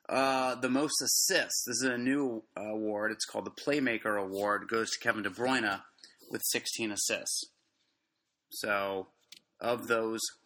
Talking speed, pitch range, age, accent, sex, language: 145 wpm, 110-140 Hz, 30-49, American, male, English